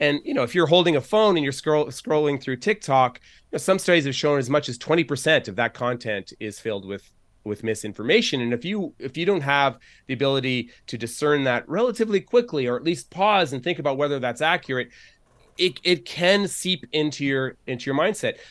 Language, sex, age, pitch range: English, male, 30-49, 115-150 Hz